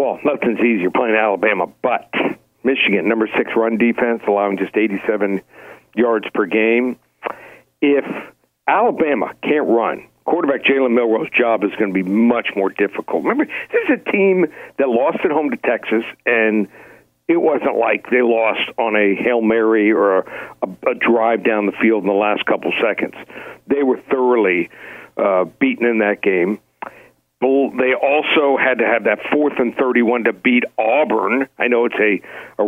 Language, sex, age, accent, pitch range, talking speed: English, male, 60-79, American, 110-150 Hz, 165 wpm